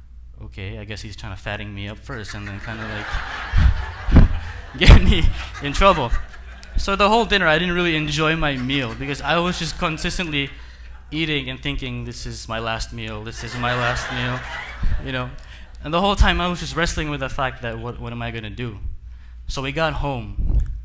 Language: English